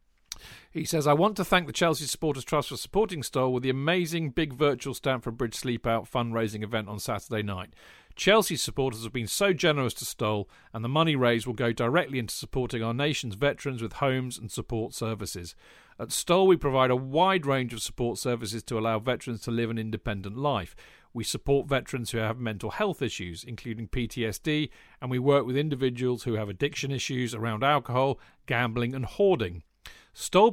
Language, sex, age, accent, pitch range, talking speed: English, male, 50-69, British, 115-140 Hz, 185 wpm